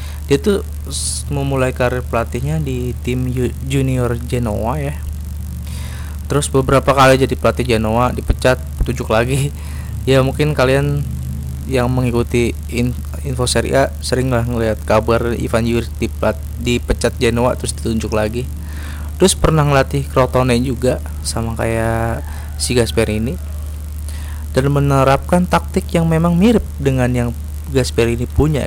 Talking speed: 120 wpm